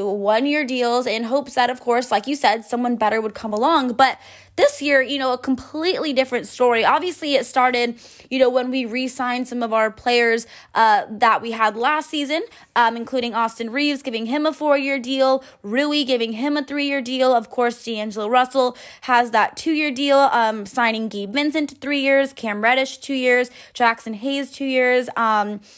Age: 20-39